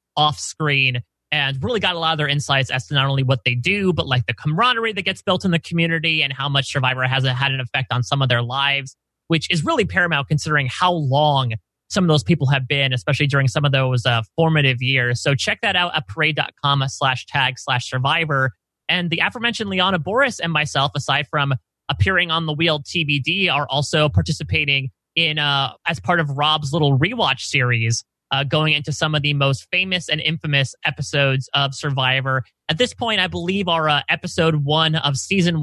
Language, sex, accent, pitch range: English, male, American, 130-160 Hz